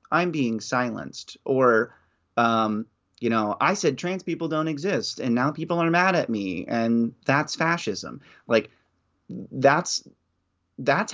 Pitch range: 110-130 Hz